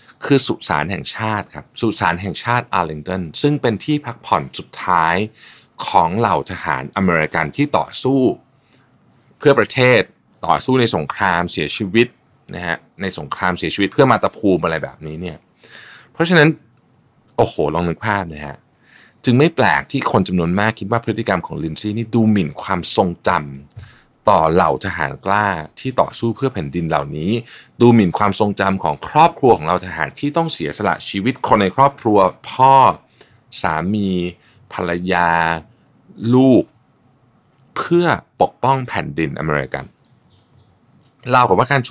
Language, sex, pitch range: Thai, male, 90-125 Hz